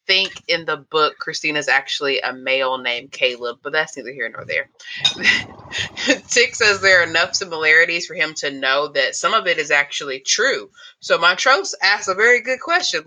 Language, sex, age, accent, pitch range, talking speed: English, female, 20-39, American, 140-195 Hz, 185 wpm